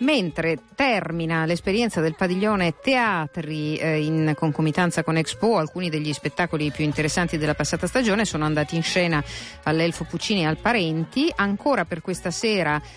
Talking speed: 150 wpm